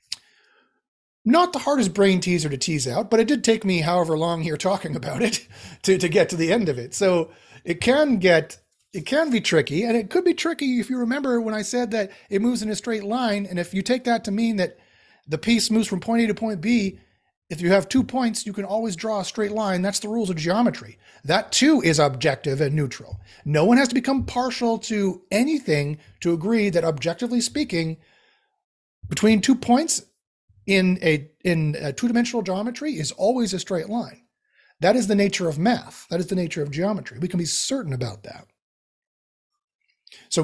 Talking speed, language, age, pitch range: 205 wpm, English, 30-49, 155-230 Hz